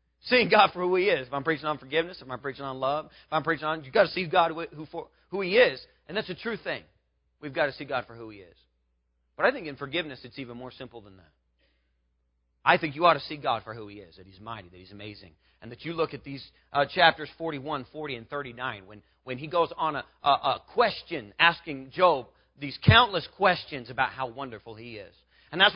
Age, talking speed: 40-59, 245 wpm